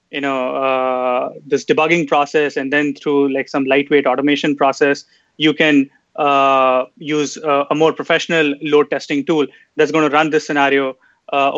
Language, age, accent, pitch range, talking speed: English, 30-49, Indian, 140-155 Hz, 165 wpm